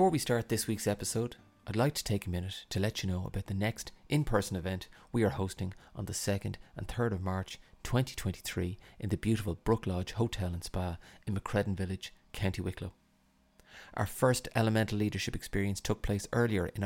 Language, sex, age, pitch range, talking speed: English, male, 30-49, 95-110 Hz, 190 wpm